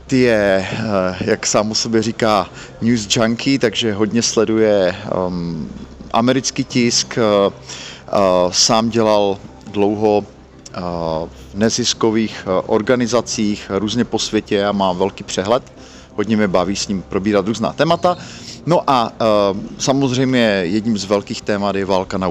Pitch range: 100-125 Hz